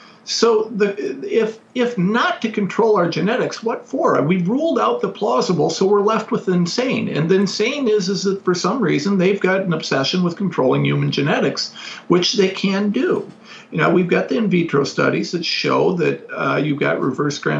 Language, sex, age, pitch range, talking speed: English, male, 50-69, 180-230 Hz, 195 wpm